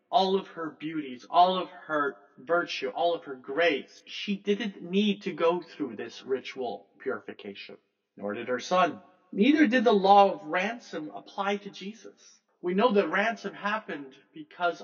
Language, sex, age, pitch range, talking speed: English, male, 50-69, 130-200 Hz, 160 wpm